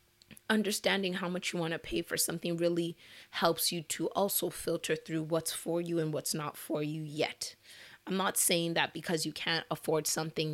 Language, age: English, 30-49